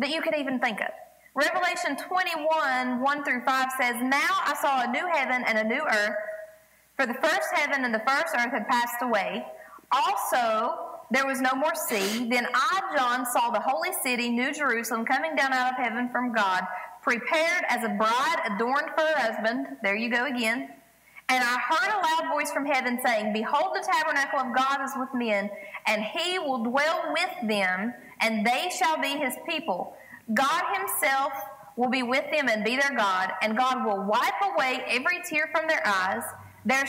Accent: American